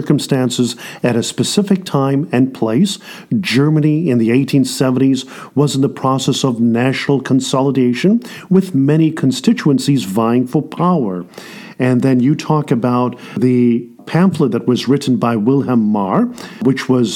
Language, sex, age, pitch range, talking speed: English, male, 50-69, 125-155 Hz, 135 wpm